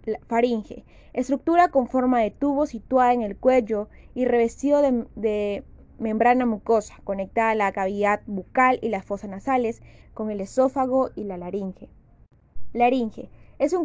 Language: Spanish